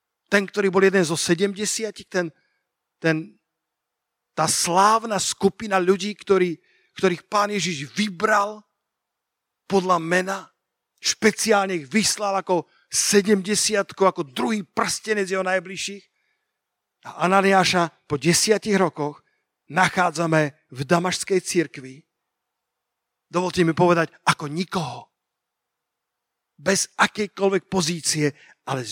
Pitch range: 150-195 Hz